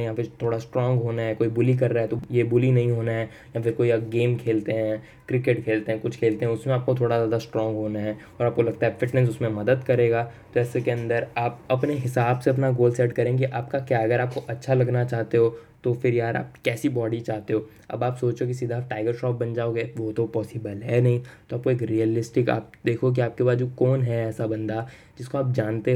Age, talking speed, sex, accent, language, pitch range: 10-29, 240 wpm, male, native, Hindi, 115-125 Hz